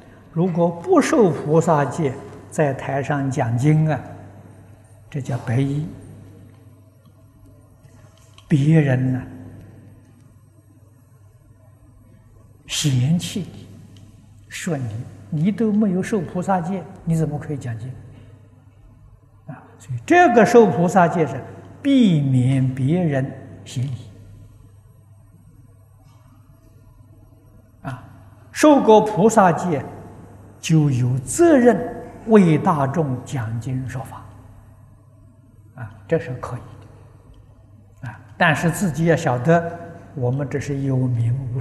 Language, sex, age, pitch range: Chinese, male, 60-79, 110-145 Hz